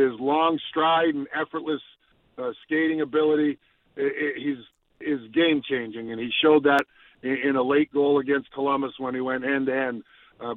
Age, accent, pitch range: 50-69, American, 135-165 Hz